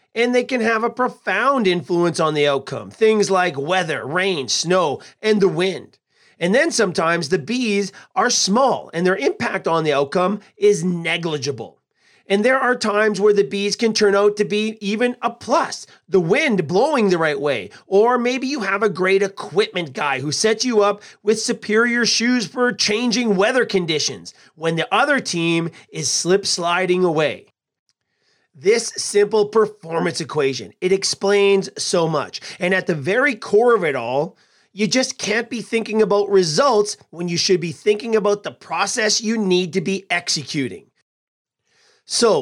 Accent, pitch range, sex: American, 170-220 Hz, male